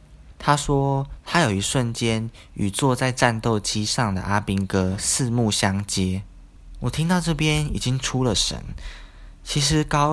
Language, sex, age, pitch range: Chinese, male, 20-39, 95-120 Hz